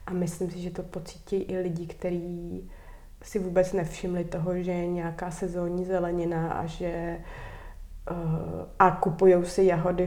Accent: native